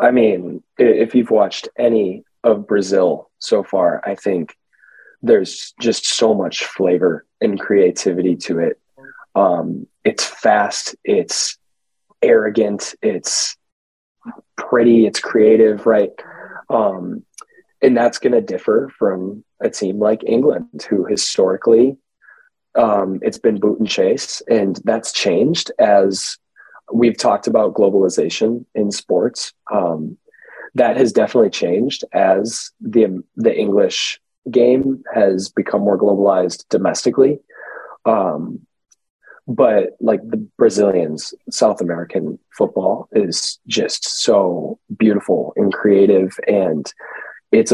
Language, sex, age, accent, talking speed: English, male, 20-39, American, 115 wpm